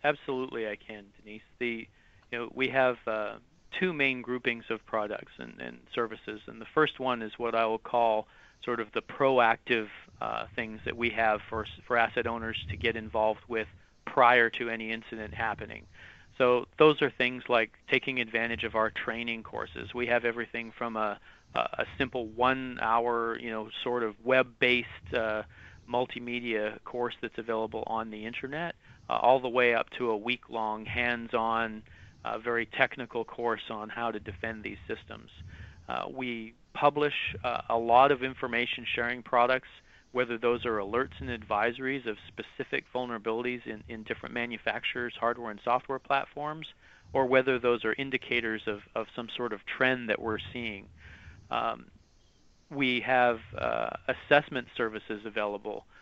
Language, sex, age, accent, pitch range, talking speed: English, male, 40-59, American, 110-125 Hz, 155 wpm